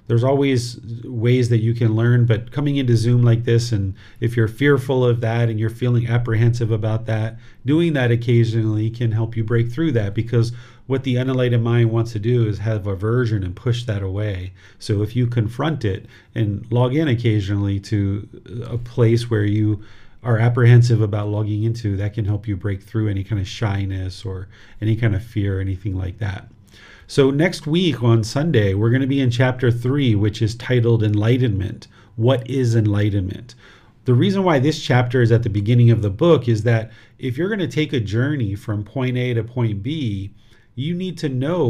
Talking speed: 195 wpm